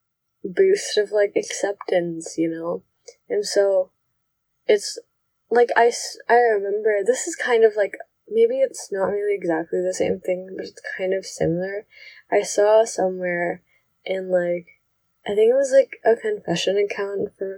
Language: English